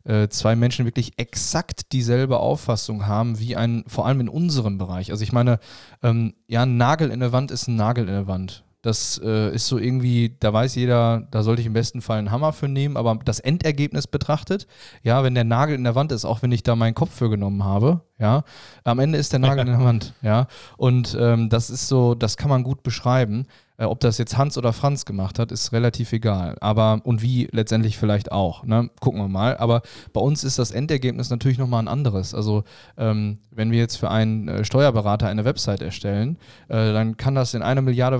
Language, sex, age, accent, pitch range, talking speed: German, male, 20-39, German, 110-125 Hz, 215 wpm